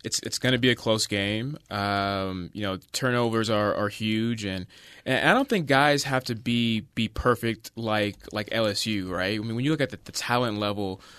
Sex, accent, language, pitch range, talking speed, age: male, American, English, 105-130 Hz, 215 wpm, 20-39